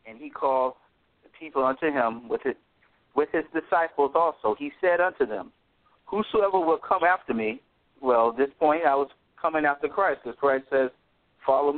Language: English